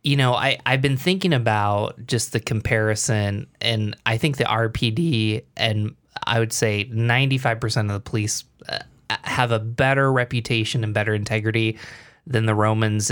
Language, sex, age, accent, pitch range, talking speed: English, male, 20-39, American, 105-125 Hz, 145 wpm